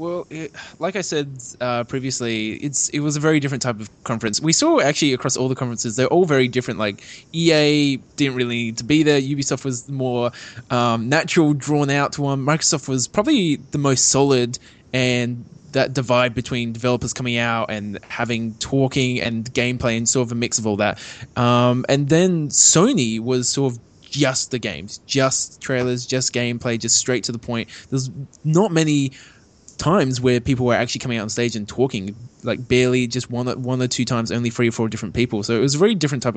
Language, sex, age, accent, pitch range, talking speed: English, male, 20-39, Australian, 120-145 Hz, 205 wpm